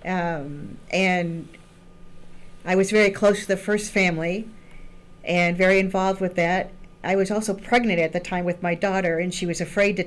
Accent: American